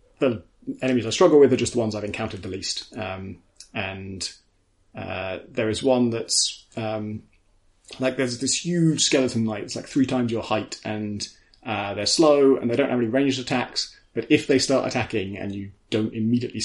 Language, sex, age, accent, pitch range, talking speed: English, male, 20-39, British, 105-125 Hz, 190 wpm